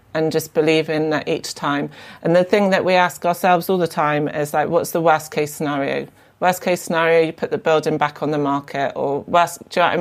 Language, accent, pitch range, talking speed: English, British, 155-175 Hz, 250 wpm